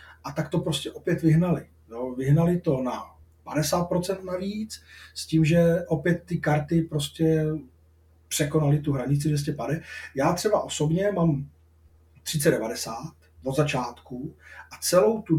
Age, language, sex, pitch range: 40-59, Czech, male, 125-160 Hz